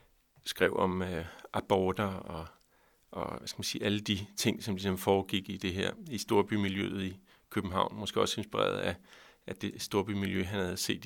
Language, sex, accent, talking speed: Danish, male, native, 180 wpm